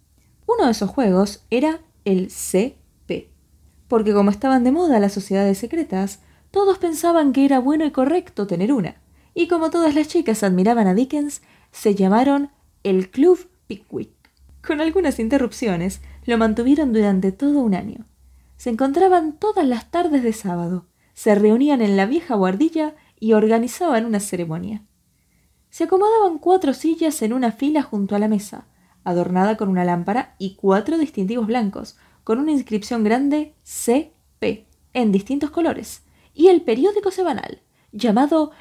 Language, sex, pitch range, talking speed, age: Spanish, female, 205-300 Hz, 150 wpm, 20-39